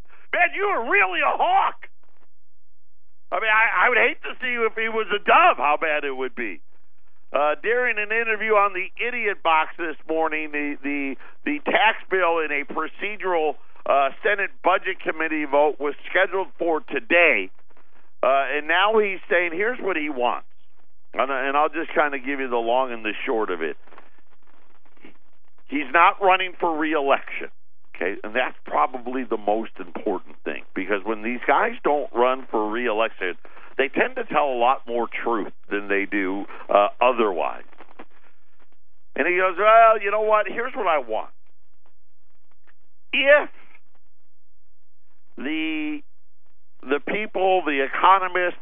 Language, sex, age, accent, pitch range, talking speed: English, male, 50-69, American, 135-205 Hz, 155 wpm